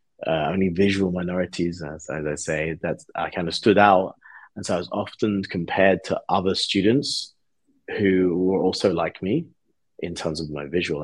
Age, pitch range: 30-49, 90-110 Hz